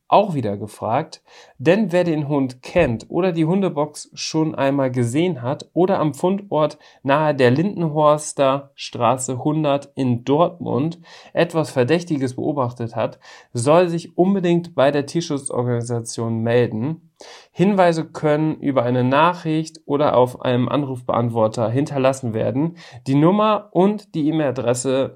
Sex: male